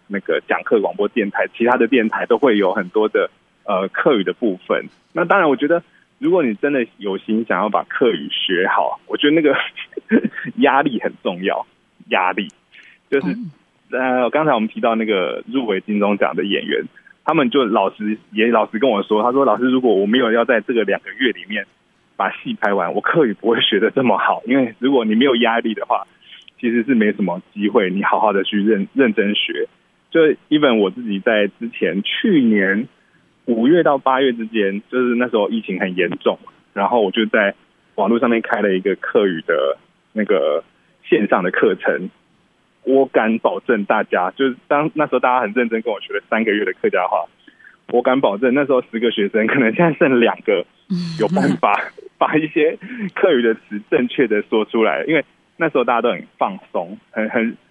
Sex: male